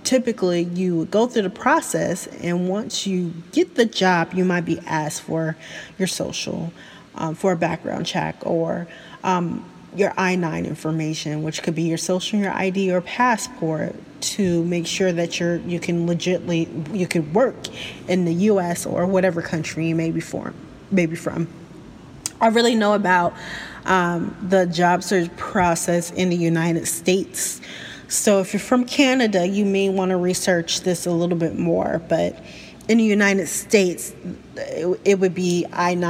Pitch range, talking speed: 165-200 Hz, 165 wpm